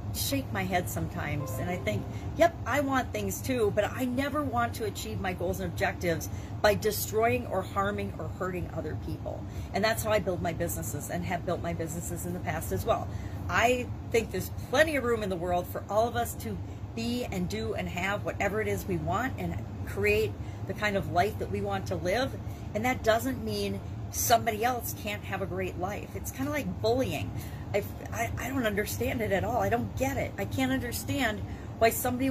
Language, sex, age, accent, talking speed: English, female, 40-59, American, 210 wpm